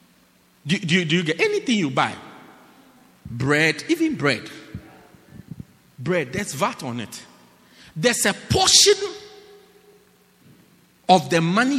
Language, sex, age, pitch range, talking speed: English, male, 50-69, 165-275 Hz, 110 wpm